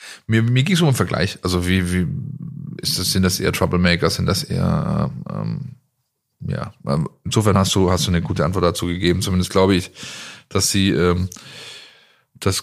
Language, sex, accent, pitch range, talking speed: German, male, German, 90-115 Hz, 180 wpm